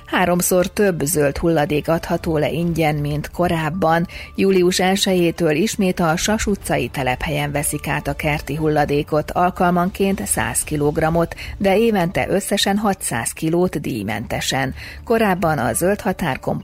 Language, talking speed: Hungarian, 125 wpm